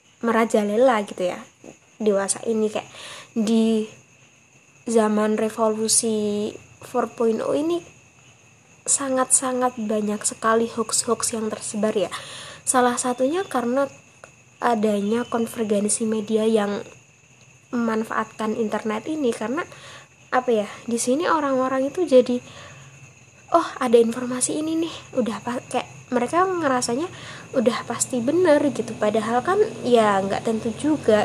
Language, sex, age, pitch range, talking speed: Indonesian, female, 20-39, 205-250 Hz, 105 wpm